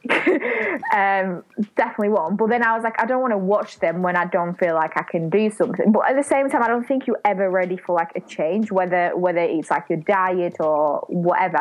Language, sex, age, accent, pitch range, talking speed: English, female, 10-29, British, 185-220 Hz, 240 wpm